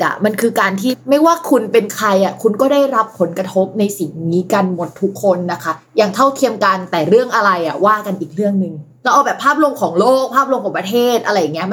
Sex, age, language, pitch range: female, 20-39, Thai, 190-250 Hz